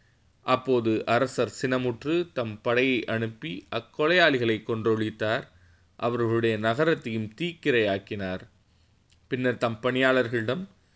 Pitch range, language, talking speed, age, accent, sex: 110-130 Hz, Tamil, 75 wpm, 20-39, native, male